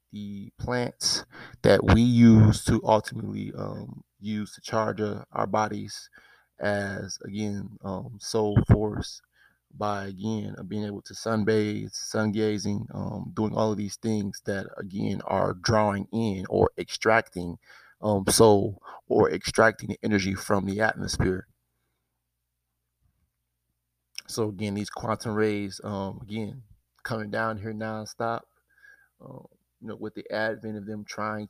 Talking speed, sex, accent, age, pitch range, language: 130 wpm, male, American, 30-49, 100-110 Hz, English